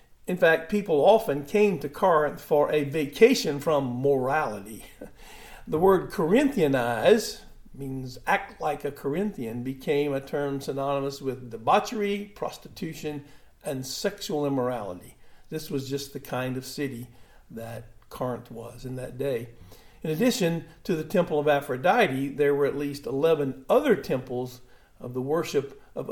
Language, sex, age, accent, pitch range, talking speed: English, male, 50-69, American, 130-170 Hz, 140 wpm